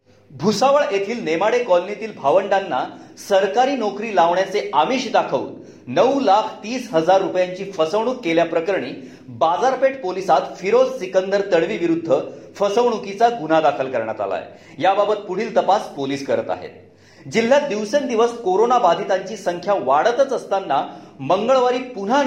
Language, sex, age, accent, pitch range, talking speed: Marathi, male, 40-59, native, 180-250 Hz, 120 wpm